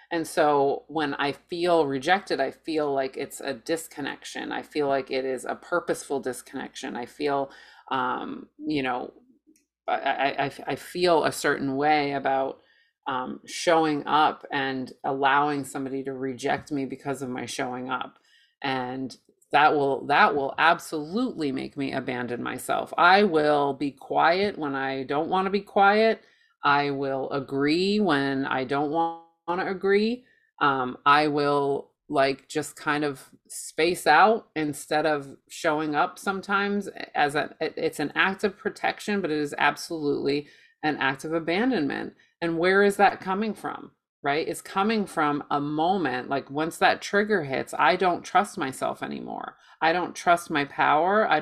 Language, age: English, 30-49